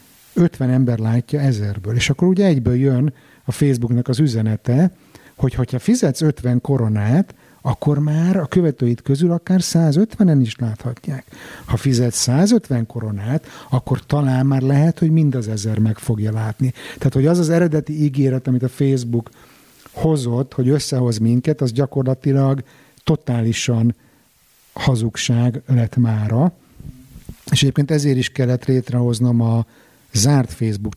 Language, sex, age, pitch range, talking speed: Hungarian, male, 50-69, 120-140 Hz, 135 wpm